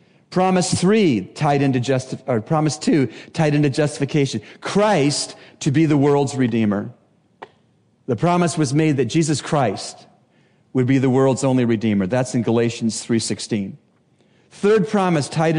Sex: male